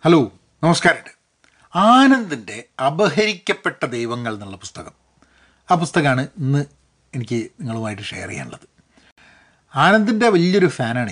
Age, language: 30-49, Malayalam